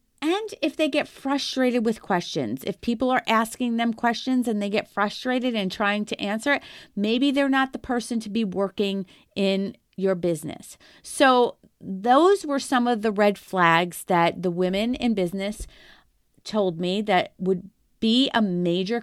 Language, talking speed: English, 165 wpm